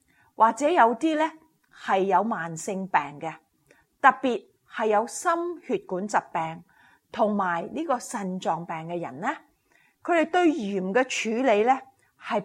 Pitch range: 195-285 Hz